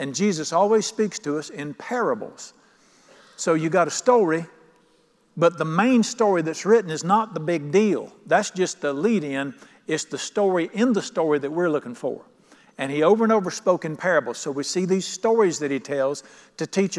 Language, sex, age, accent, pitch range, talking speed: English, male, 50-69, American, 155-205 Hz, 200 wpm